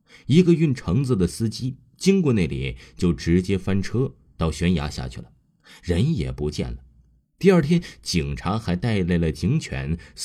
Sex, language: male, Chinese